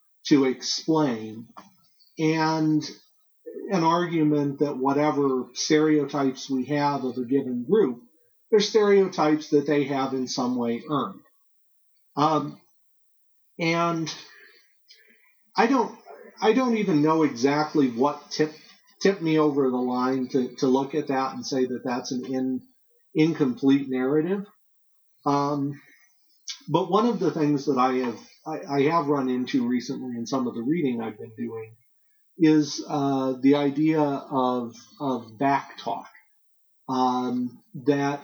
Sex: male